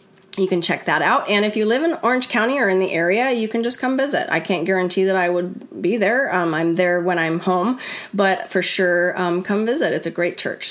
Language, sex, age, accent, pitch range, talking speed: English, female, 30-49, American, 180-250 Hz, 250 wpm